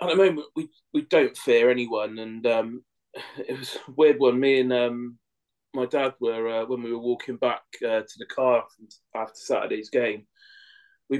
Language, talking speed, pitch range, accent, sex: English, 190 wpm, 120-135 Hz, British, male